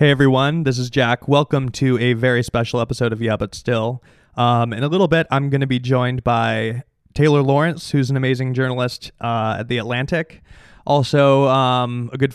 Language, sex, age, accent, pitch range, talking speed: English, male, 20-39, American, 120-140 Hz, 195 wpm